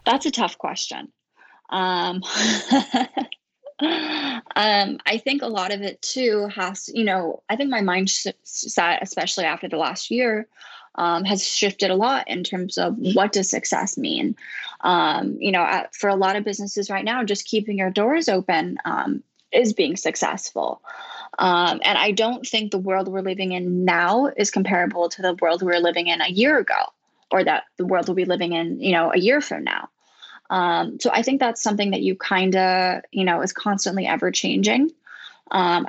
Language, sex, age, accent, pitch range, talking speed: English, female, 10-29, American, 180-220 Hz, 185 wpm